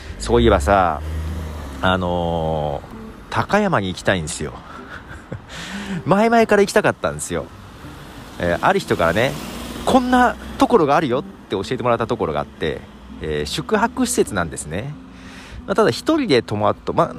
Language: Japanese